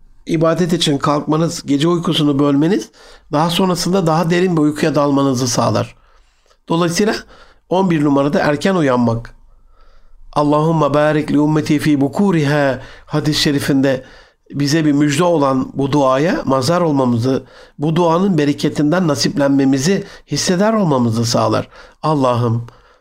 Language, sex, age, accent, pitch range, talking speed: Turkish, male, 60-79, native, 130-165 Hz, 110 wpm